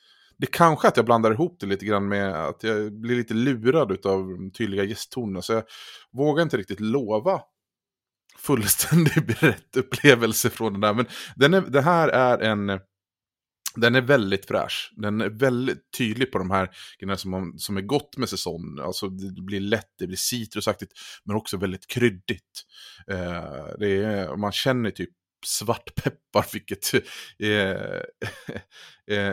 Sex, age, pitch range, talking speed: male, 30-49, 95-125 Hz, 155 wpm